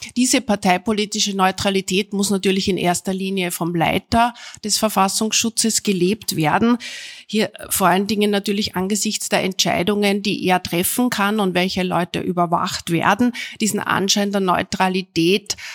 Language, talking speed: German, 135 wpm